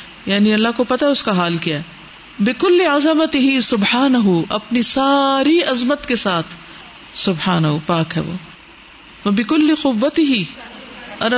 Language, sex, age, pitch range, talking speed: Urdu, female, 50-69, 195-270 Hz, 120 wpm